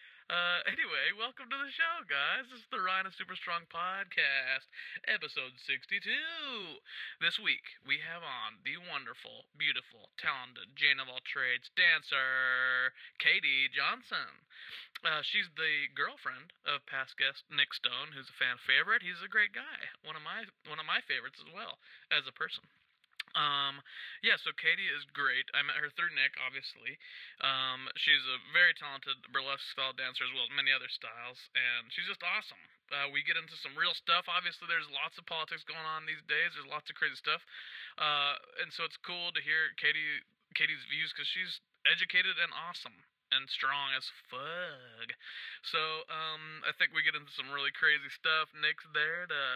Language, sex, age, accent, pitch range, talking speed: English, male, 20-39, American, 150-220 Hz, 175 wpm